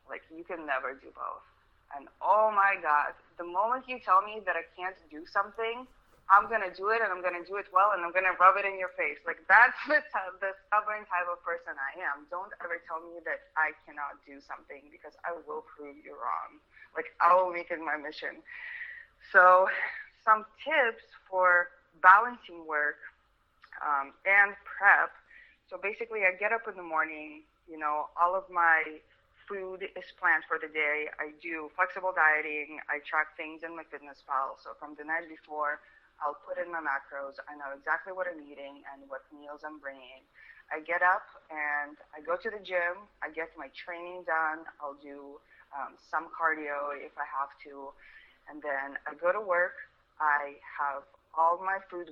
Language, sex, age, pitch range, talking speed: English, female, 20-39, 150-190 Hz, 190 wpm